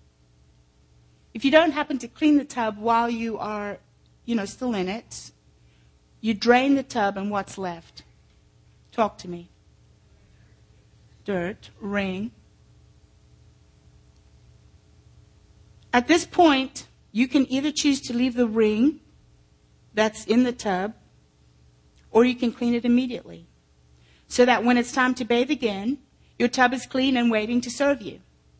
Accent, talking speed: American, 140 wpm